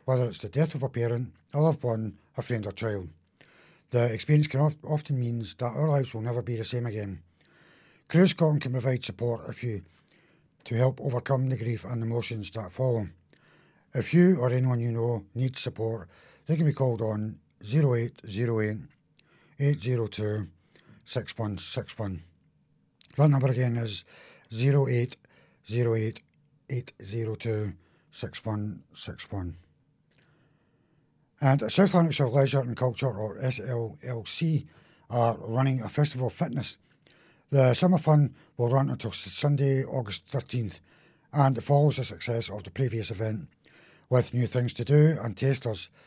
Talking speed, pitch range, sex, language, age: 140 wpm, 115-145 Hz, male, English, 60-79